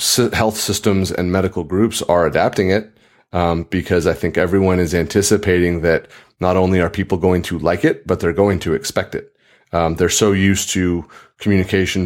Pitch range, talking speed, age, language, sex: 85-95 Hz, 180 wpm, 30-49, English, male